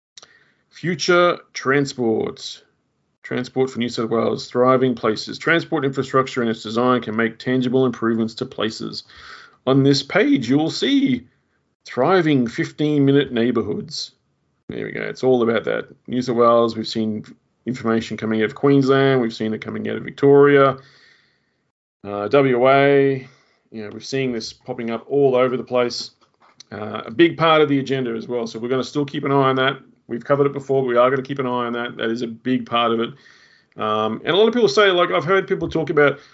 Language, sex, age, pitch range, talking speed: English, male, 30-49, 120-170 Hz, 195 wpm